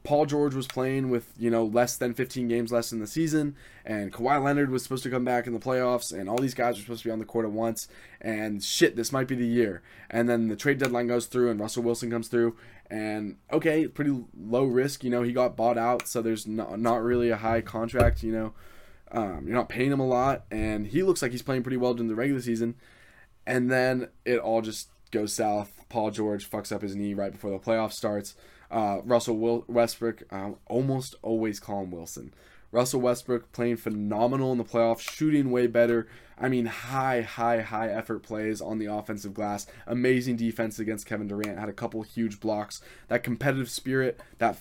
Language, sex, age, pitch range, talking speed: English, male, 20-39, 110-125 Hz, 215 wpm